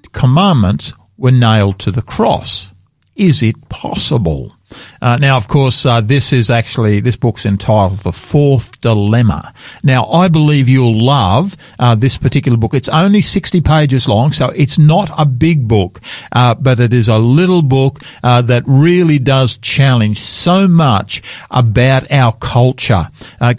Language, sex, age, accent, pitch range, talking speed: English, male, 50-69, Australian, 115-150 Hz, 155 wpm